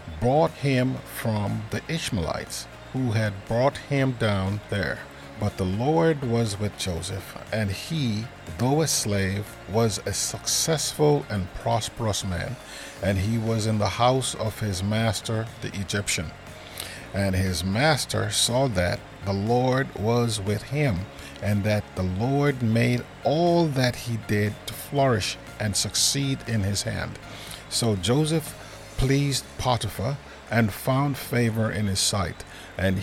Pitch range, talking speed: 100-125 Hz, 140 wpm